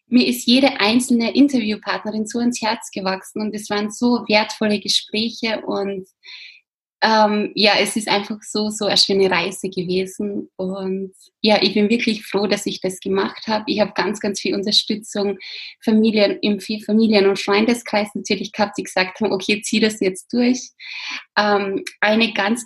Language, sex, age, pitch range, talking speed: German, female, 20-39, 190-220 Hz, 165 wpm